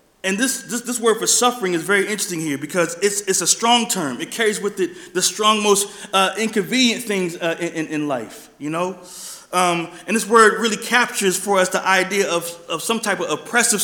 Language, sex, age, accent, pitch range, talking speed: English, male, 30-49, American, 175-225 Hz, 215 wpm